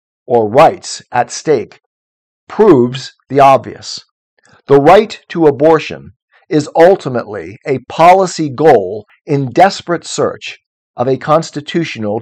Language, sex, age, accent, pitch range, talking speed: English, male, 50-69, American, 125-165 Hz, 110 wpm